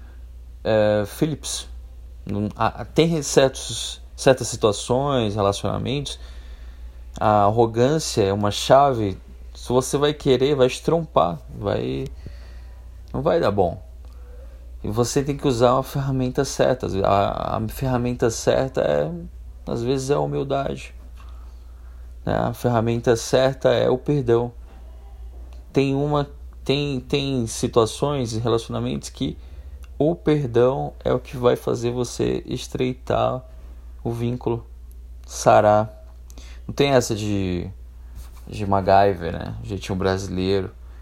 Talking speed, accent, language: 110 wpm, Brazilian, Portuguese